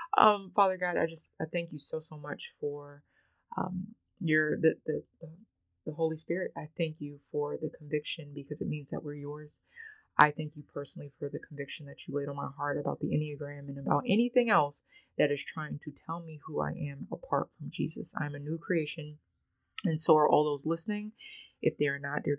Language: English